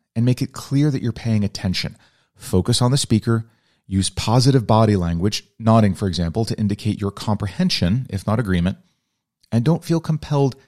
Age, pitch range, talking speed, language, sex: 30-49, 95-130 Hz, 170 wpm, English, male